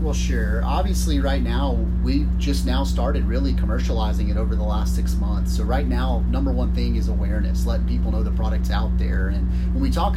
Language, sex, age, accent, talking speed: English, male, 30-49, American, 210 wpm